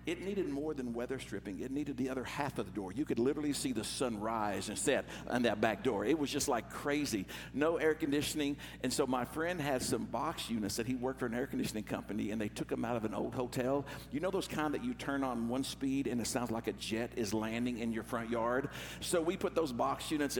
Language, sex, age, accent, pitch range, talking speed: English, male, 60-79, American, 115-155 Hz, 260 wpm